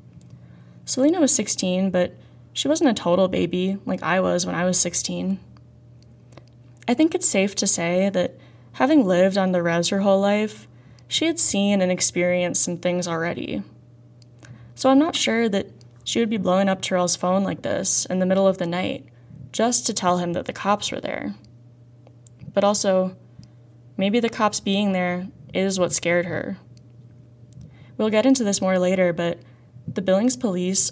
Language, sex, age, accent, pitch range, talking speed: English, female, 10-29, American, 125-195 Hz, 175 wpm